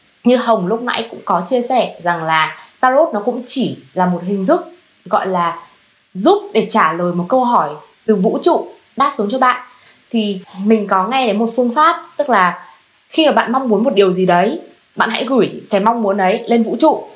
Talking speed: 220 wpm